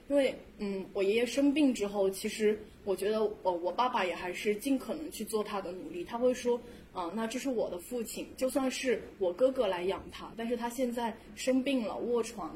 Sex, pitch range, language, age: female, 195-245 Hz, Chinese, 10-29